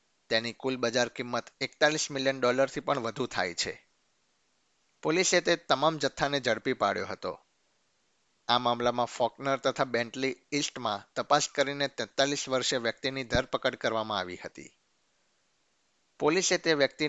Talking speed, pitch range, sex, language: 100 wpm, 120-140 Hz, male, Gujarati